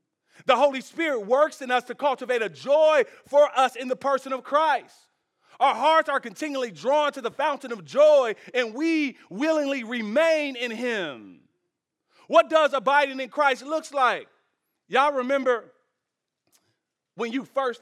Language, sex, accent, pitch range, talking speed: English, male, American, 160-260 Hz, 150 wpm